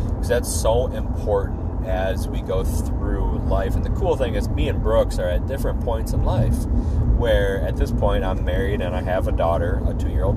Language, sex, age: English, male, 30-49